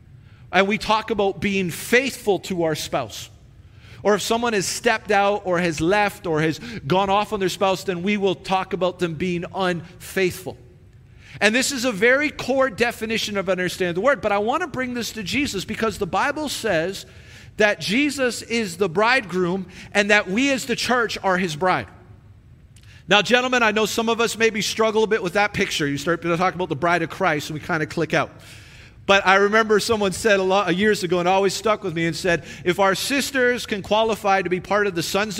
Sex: male